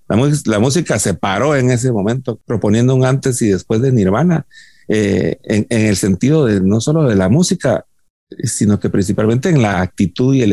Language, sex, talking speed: Spanish, male, 190 wpm